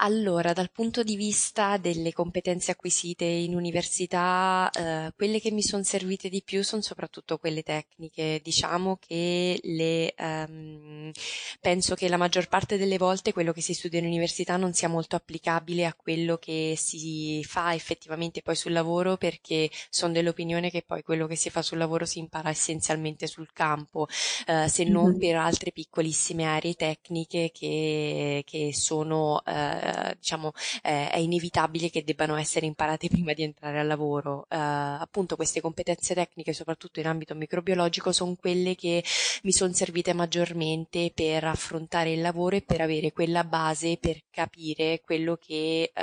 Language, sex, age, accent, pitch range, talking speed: Italian, female, 20-39, native, 155-175 Hz, 160 wpm